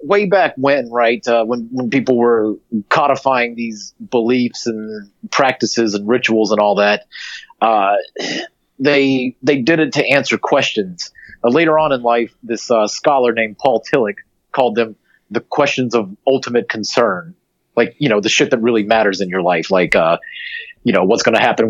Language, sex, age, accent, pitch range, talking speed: English, male, 30-49, American, 105-130 Hz, 175 wpm